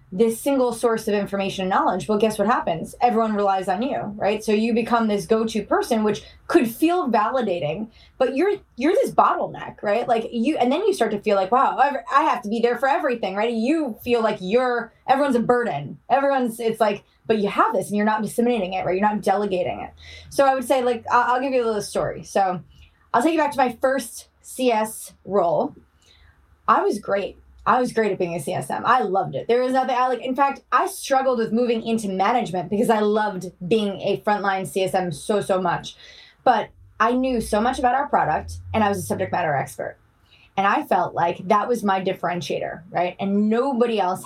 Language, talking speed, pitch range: English, 215 wpm, 195-245 Hz